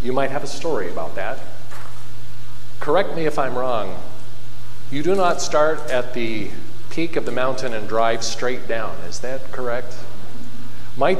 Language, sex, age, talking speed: English, male, 40-59, 160 wpm